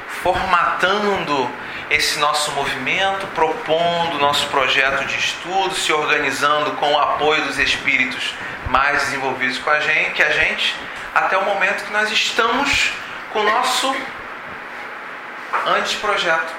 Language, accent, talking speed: Portuguese, Brazilian, 125 wpm